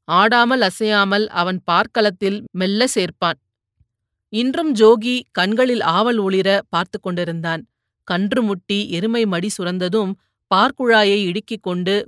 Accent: native